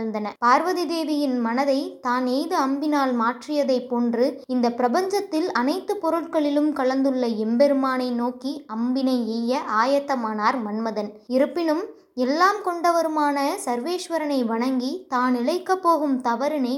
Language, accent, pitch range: Tamil, native, 240-300 Hz